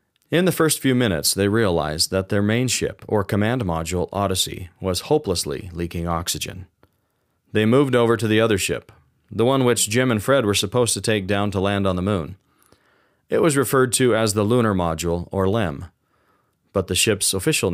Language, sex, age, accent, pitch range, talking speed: English, male, 30-49, American, 90-120 Hz, 190 wpm